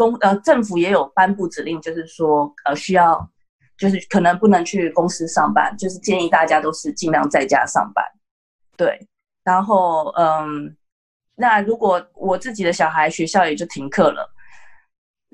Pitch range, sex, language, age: 165-205 Hz, female, Chinese, 20-39